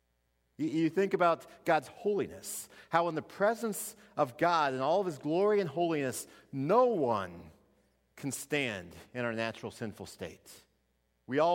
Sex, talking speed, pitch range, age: male, 150 wpm, 110-160 Hz, 40-59